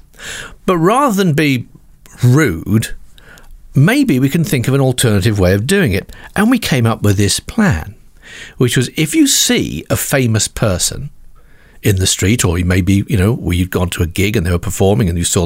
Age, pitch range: 50-69, 100-145 Hz